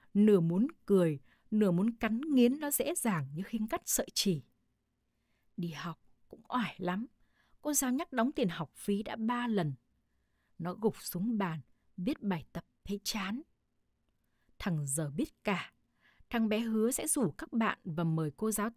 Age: 20-39